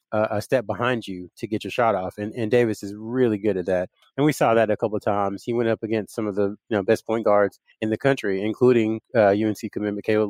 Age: 30-49